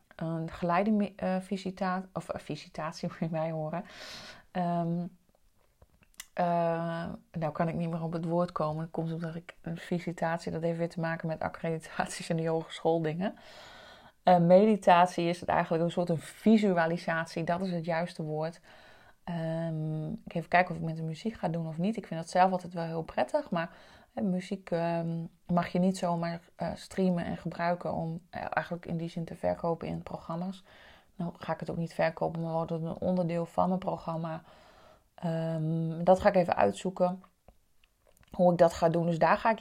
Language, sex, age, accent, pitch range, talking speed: Dutch, female, 30-49, Dutch, 165-185 Hz, 185 wpm